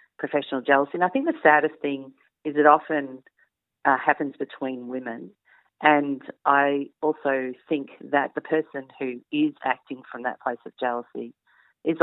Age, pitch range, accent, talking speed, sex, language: 40-59, 125-150 Hz, Australian, 155 wpm, female, English